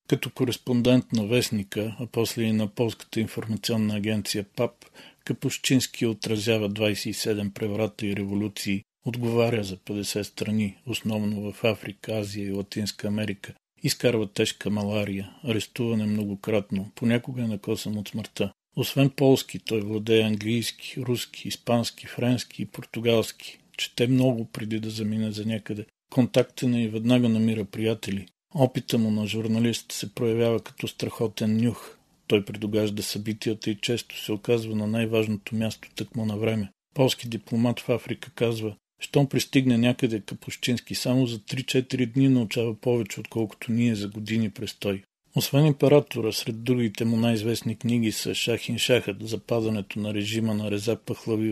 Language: Bulgarian